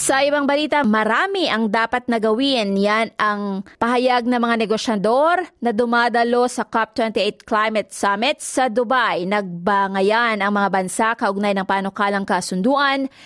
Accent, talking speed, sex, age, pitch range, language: native, 130 wpm, female, 20-39, 215-260 Hz, Filipino